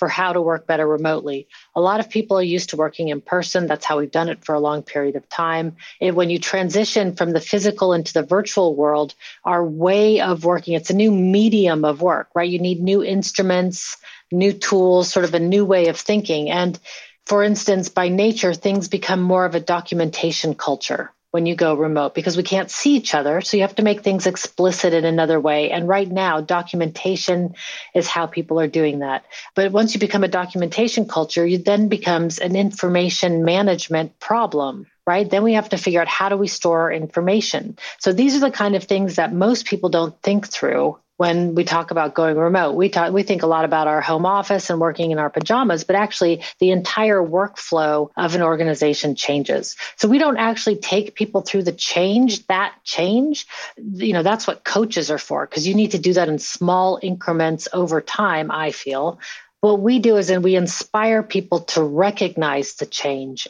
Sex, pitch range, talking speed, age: female, 165-200 Hz, 200 wpm, 30-49